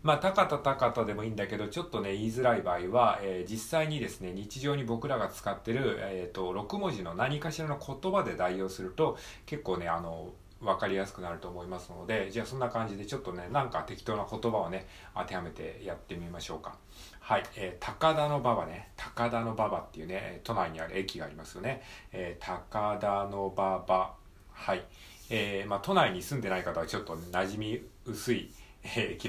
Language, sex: Japanese, male